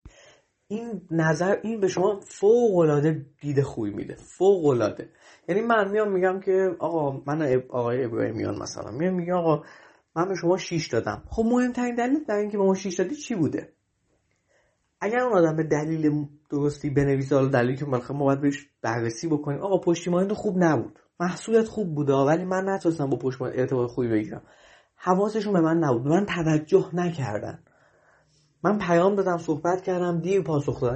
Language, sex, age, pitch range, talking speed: Persian, male, 30-49, 145-190 Hz, 175 wpm